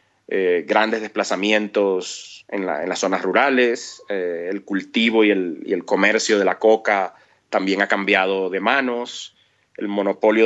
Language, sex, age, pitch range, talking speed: Spanish, male, 30-49, 110-130 Hz, 155 wpm